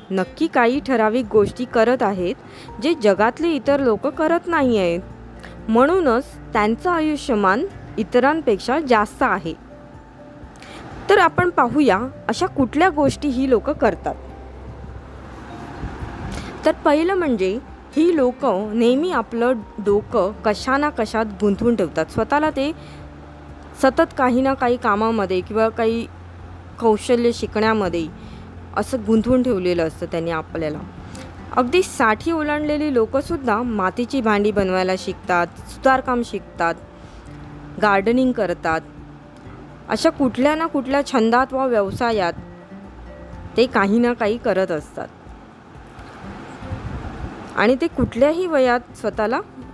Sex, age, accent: female, 20-39, native